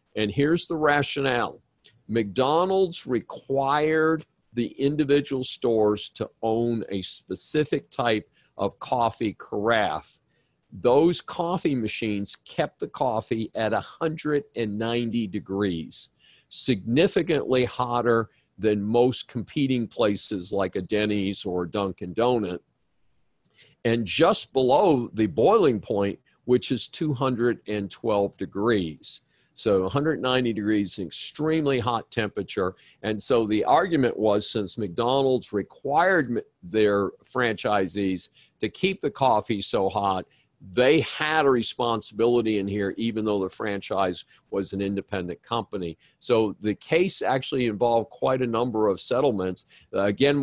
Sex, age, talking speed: male, 50-69, 115 wpm